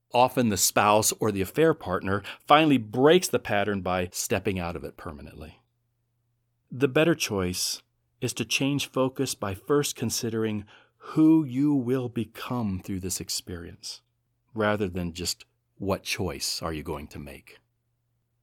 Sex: male